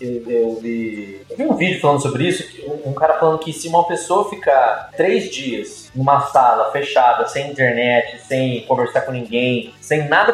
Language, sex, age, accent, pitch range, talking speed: Portuguese, male, 20-39, Brazilian, 135-200 Hz, 165 wpm